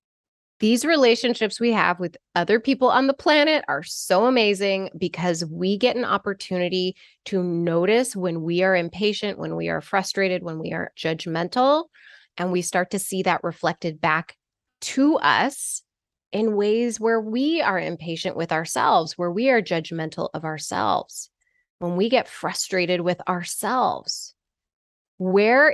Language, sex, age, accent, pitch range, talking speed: English, female, 20-39, American, 175-225 Hz, 145 wpm